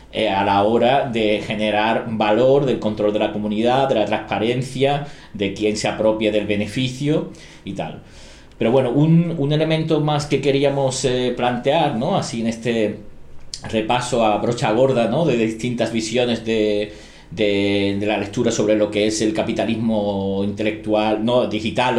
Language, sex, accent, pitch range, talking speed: Spanish, male, Spanish, 105-120 Hz, 160 wpm